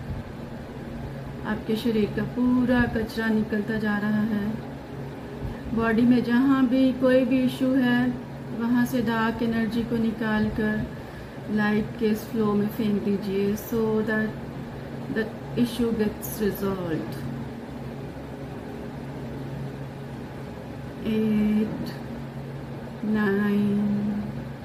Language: Hindi